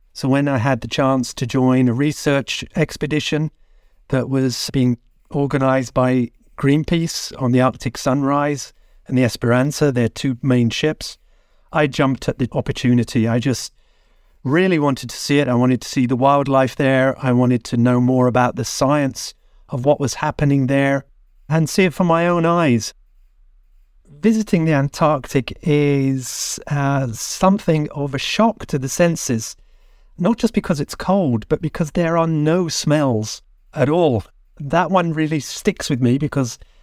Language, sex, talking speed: English, male, 160 wpm